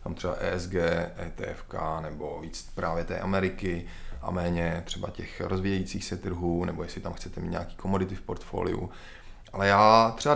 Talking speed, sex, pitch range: 160 wpm, male, 90-105 Hz